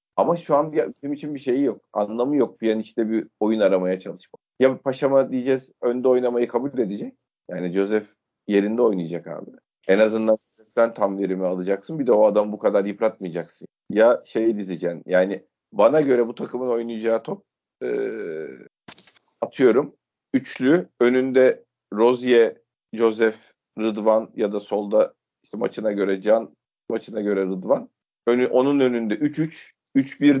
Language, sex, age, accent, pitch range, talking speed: Turkish, male, 40-59, native, 100-135 Hz, 145 wpm